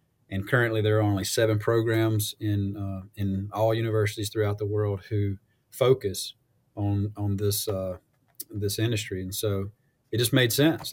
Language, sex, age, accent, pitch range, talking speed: English, male, 30-49, American, 100-115 Hz, 160 wpm